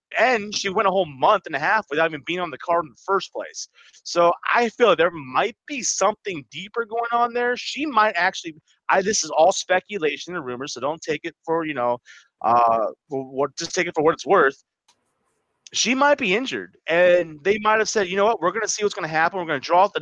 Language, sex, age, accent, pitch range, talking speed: English, male, 30-49, American, 145-205 Hz, 250 wpm